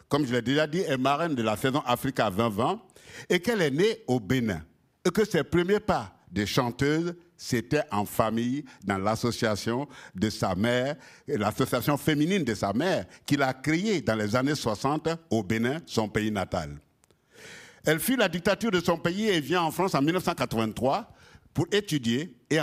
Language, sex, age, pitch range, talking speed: French, male, 60-79, 110-165 Hz, 180 wpm